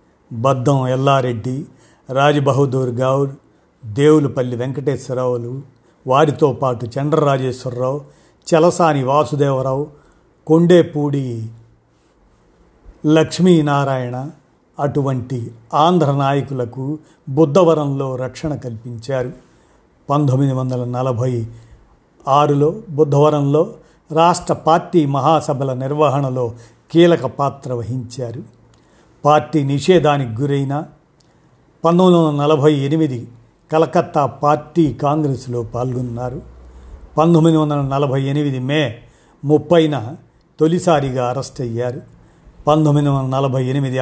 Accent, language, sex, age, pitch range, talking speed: native, Telugu, male, 50-69, 130-155 Hz, 65 wpm